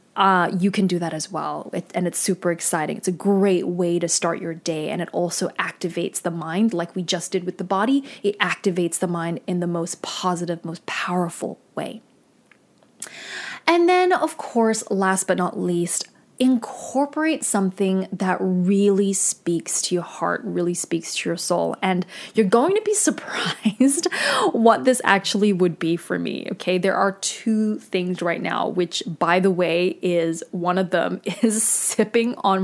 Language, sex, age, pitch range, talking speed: English, female, 20-39, 180-220 Hz, 175 wpm